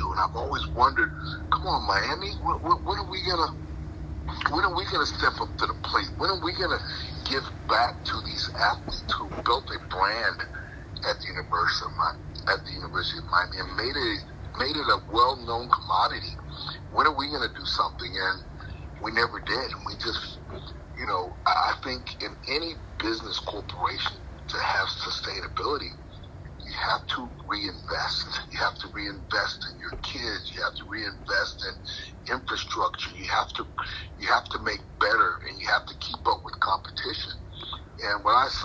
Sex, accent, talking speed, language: male, American, 170 wpm, English